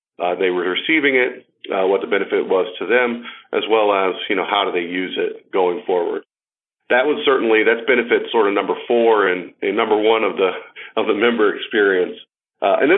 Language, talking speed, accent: English, 210 wpm, American